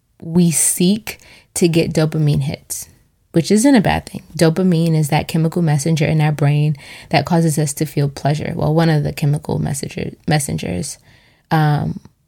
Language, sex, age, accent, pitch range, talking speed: English, female, 20-39, American, 150-170 Hz, 160 wpm